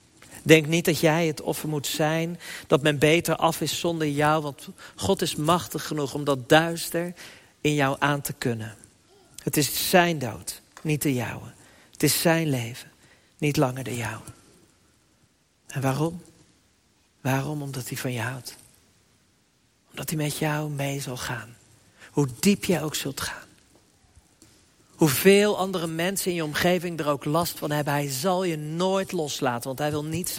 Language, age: Dutch, 50-69